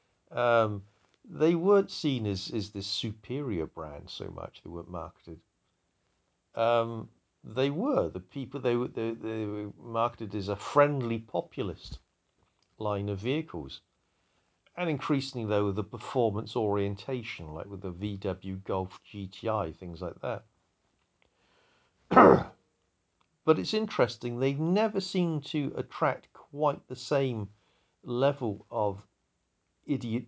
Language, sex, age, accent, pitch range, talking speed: English, male, 50-69, British, 95-135 Hz, 120 wpm